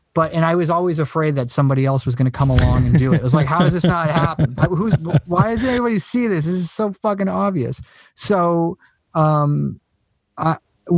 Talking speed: 220 wpm